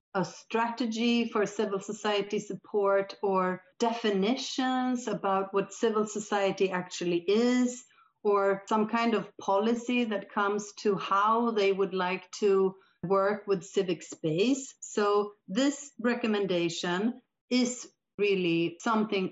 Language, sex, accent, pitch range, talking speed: English, female, Swedish, 180-230 Hz, 115 wpm